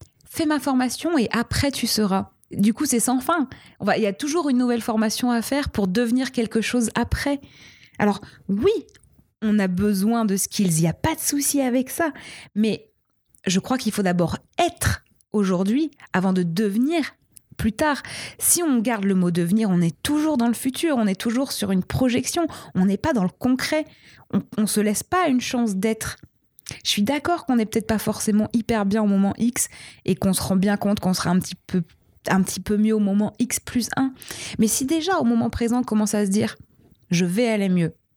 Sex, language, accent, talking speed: female, French, French, 215 wpm